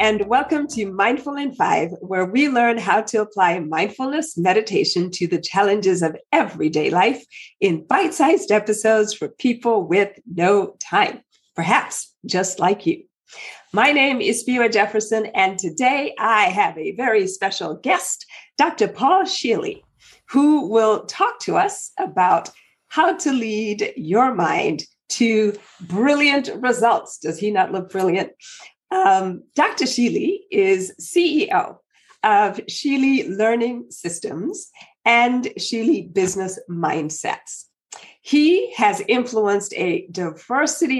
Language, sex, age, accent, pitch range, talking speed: English, female, 50-69, American, 200-300 Hz, 125 wpm